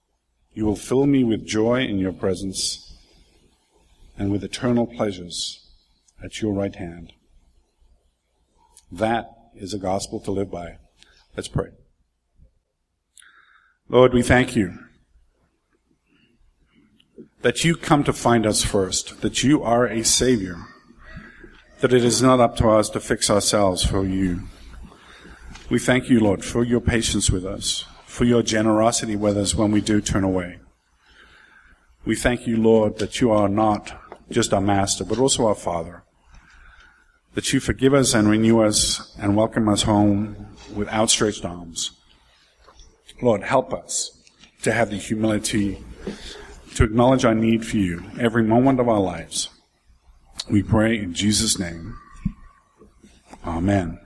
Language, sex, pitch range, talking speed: English, male, 90-115 Hz, 140 wpm